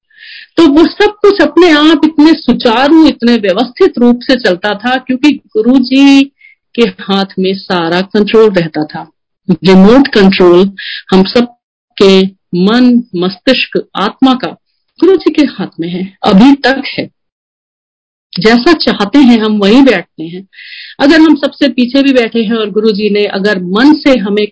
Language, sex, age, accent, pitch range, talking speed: Hindi, female, 50-69, native, 205-295 Hz, 155 wpm